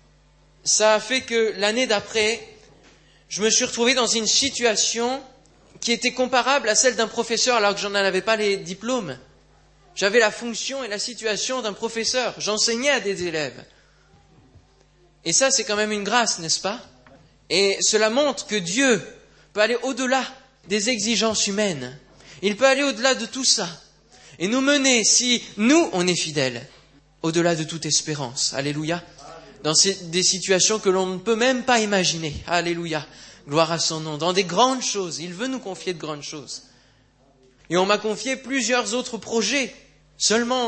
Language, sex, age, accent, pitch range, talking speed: French, male, 20-39, French, 165-235 Hz, 170 wpm